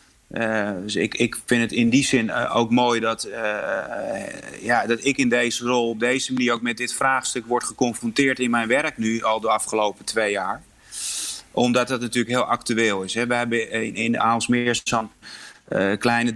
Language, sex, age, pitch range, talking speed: Dutch, male, 30-49, 115-125 Hz, 180 wpm